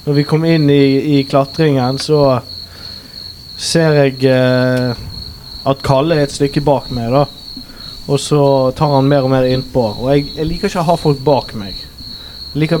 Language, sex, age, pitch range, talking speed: English, male, 20-39, 115-150 Hz, 175 wpm